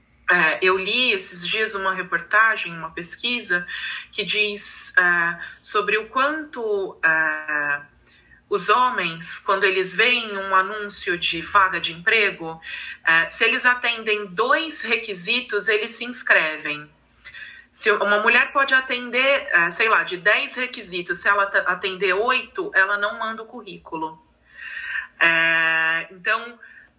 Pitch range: 180-235 Hz